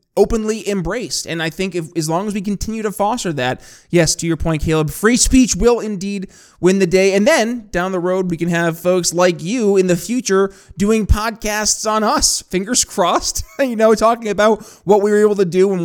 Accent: American